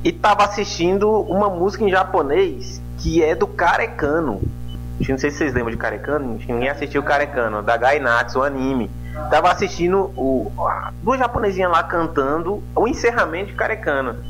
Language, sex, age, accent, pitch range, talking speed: Portuguese, male, 20-39, Brazilian, 105-165 Hz, 155 wpm